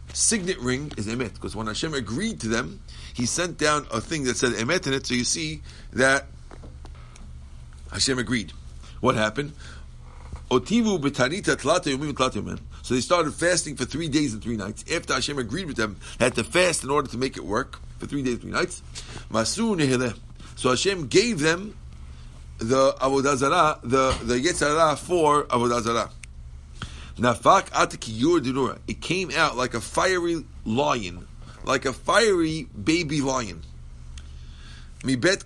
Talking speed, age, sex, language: 140 wpm, 50-69, male, English